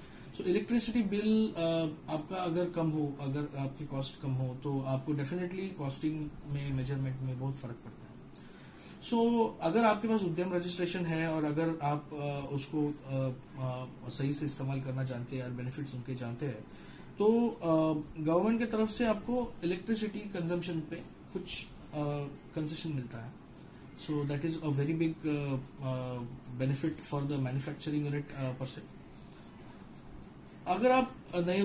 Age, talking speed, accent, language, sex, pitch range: 20-39, 150 wpm, native, Hindi, male, 135-170 Hz